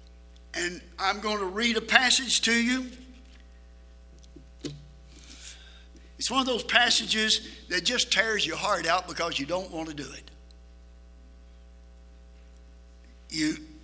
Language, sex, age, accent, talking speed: English, male, 60-79, American, 120 wpm